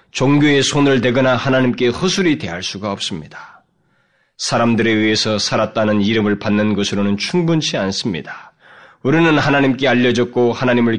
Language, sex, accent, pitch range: Korean, male, native, 100-130 Hz